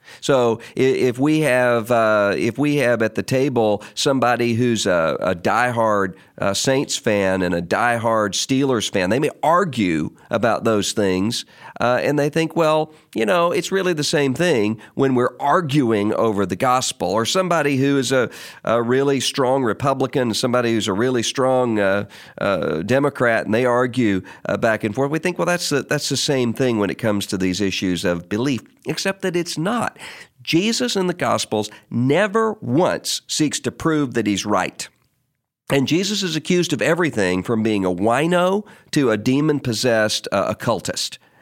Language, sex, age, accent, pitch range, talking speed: English, male, 50-69, American, 110-155 Hz, 170 wpm